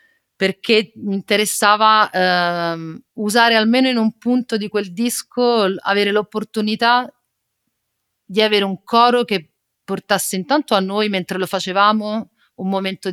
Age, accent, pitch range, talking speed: 40-59, native, 180-210 Hz, 130 wpm